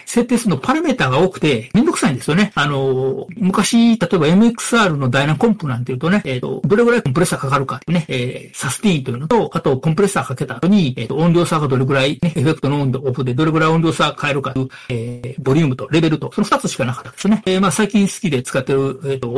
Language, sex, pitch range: Japanese, male, 135-195 Hz